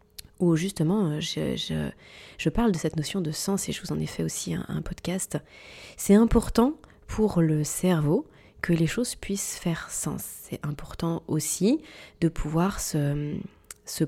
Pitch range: 155-195 Hz